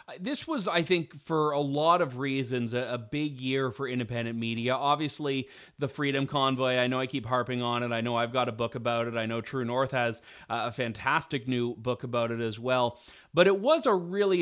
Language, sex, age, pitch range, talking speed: English, male, 30-49, 120-150 Hz, 215 wpm